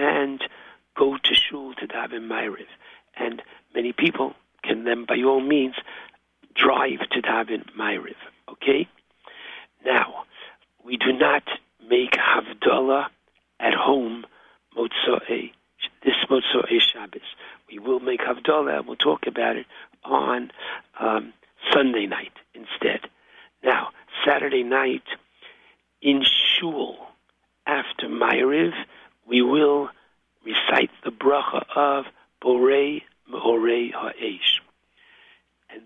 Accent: American